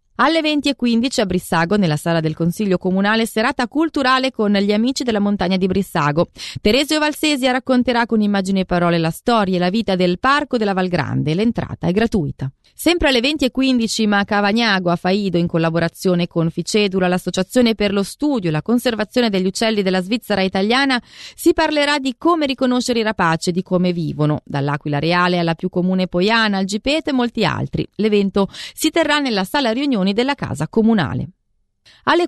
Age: 30-49